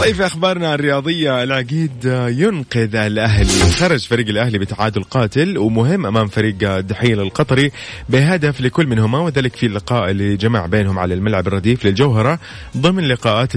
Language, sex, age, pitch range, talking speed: Arabic, male, 30-49, 105-140 Hz, 140 wpm